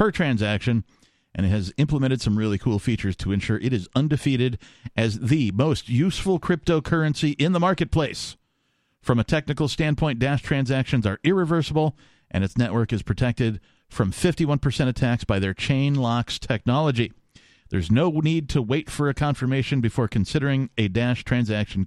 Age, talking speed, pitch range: 50-69, 160 wpm, 110-150 Hz